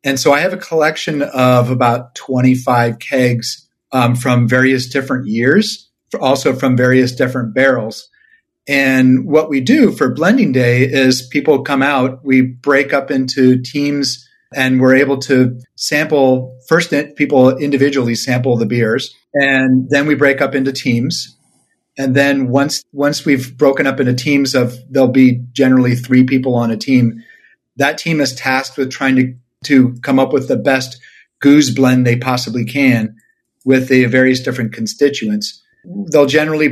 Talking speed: 160 wpm